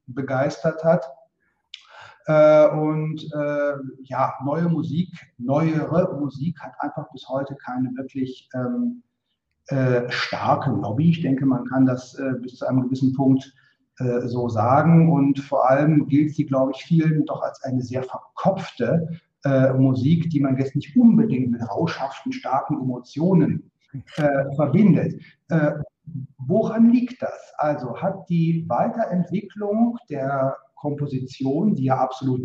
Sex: male